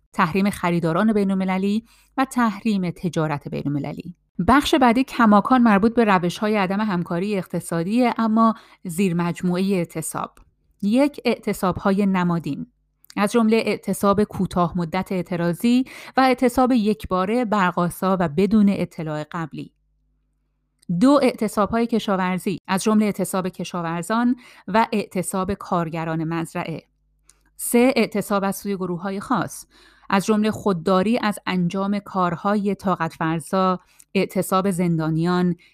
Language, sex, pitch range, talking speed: Persian, female, 175-215 Hz, 105 wpm